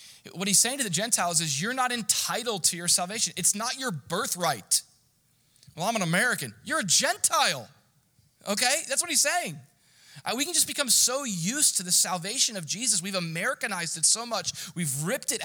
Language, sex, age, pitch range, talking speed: English, male, 20-39, 155-215 Hz, 185 wpm